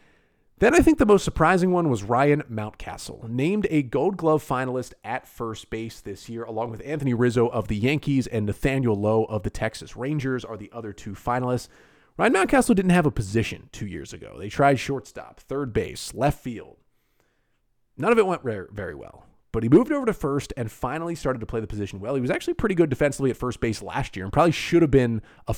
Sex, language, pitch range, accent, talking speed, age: male, English, 115-155 Hz, American, 215 wpm, 30-49